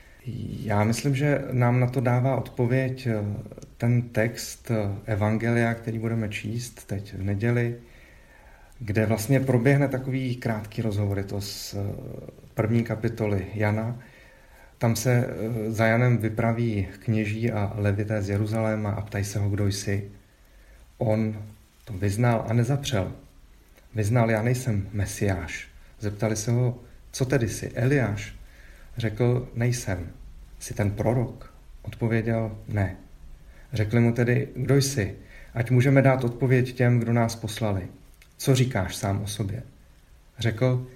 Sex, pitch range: male, 100-120 Hz